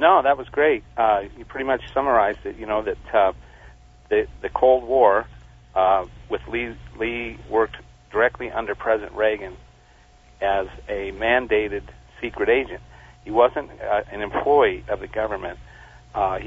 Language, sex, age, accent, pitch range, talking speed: English, male, 50-69, American, 100-115 Hz, 150 wpm